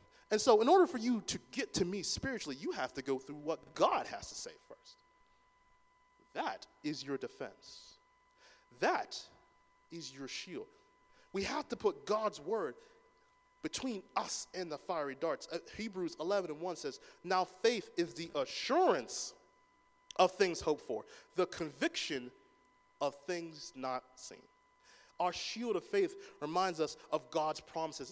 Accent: American